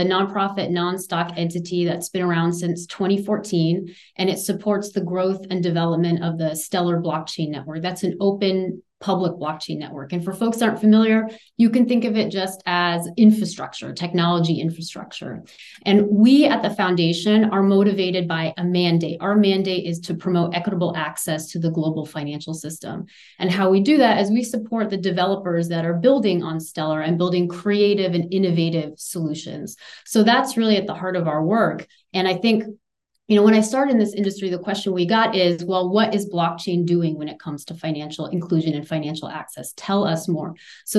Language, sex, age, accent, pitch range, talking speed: English, female, 30-49, American, 170-210 Hz, 185 wpm